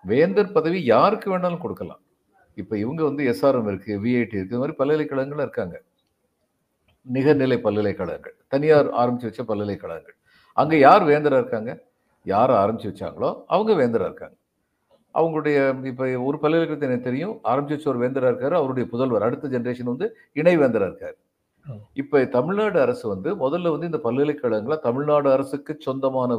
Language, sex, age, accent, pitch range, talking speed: Tamil, male, 50-69, native, 130-170 Hz, 125 wpm